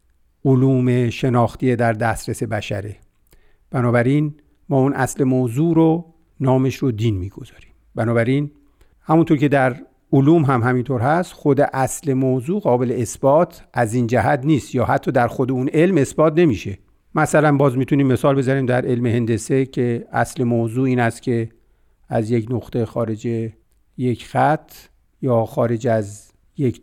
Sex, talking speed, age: male, 145 wpm, 50-69